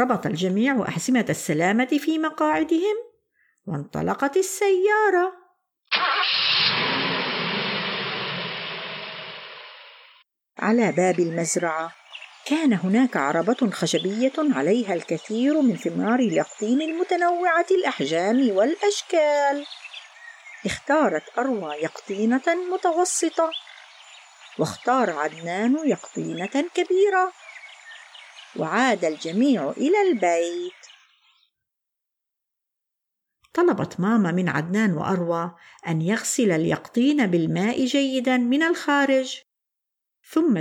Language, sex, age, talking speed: Arabic, female, 50-69, 70 wpm